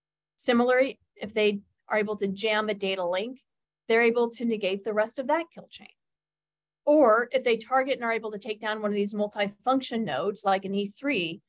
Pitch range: 205-255 Hz